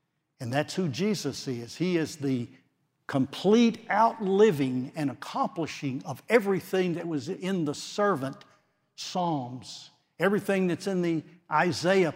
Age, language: 60-79, English